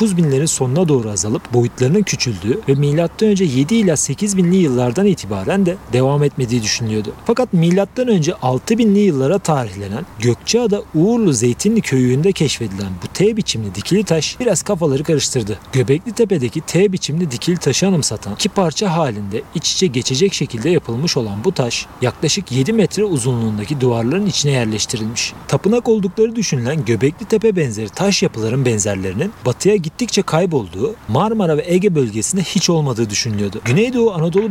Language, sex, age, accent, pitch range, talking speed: Turkish, male, 40-59, native, 125-195 Hz, 140 wpm